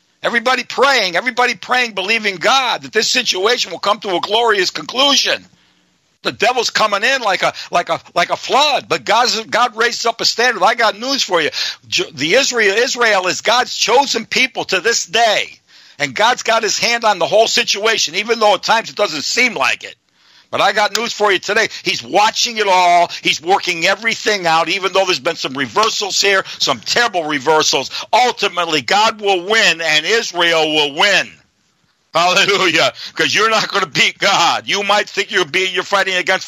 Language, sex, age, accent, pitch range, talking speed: English, male, 60-79, American, 170-225 Hz, 190 wpm